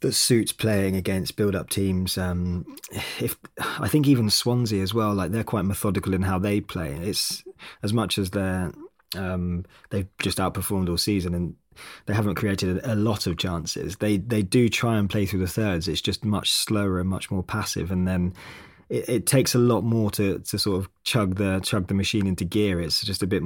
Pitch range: 95-110 Hz